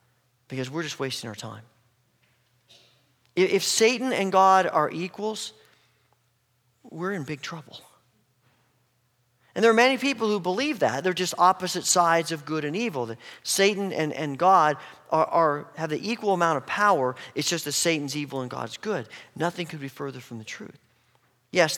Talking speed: 170 wpm